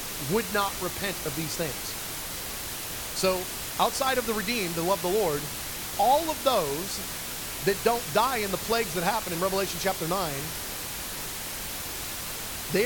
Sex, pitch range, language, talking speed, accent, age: male, 160-205 Hz, English, 145 wpm, American, 30-49